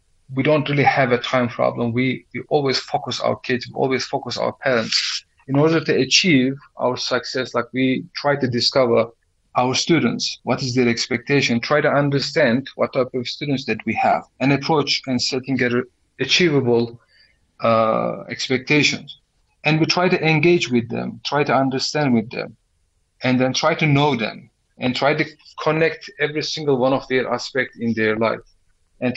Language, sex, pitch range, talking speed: English, male, 120-150 Hz, 175 wpm